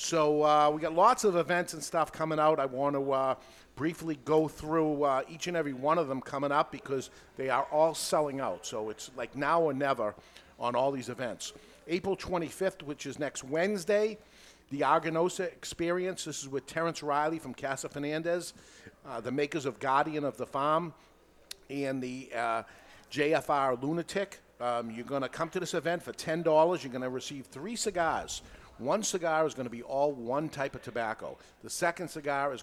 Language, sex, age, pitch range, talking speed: English, male, 50-69, 130-160 Hz, 190 wpm